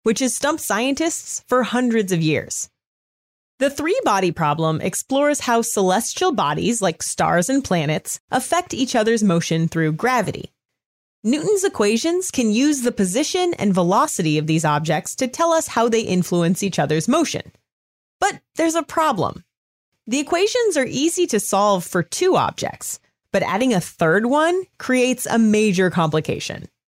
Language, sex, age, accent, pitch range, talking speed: English, female, 30-49, American, 185-280 Hz, 150 wpm